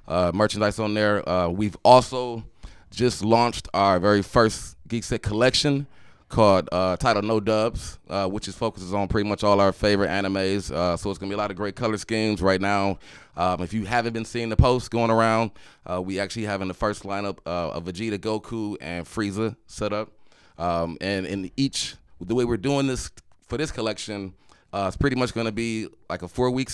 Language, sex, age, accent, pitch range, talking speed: English, male, 20-39, American, 95-115 Hz, 205 wpm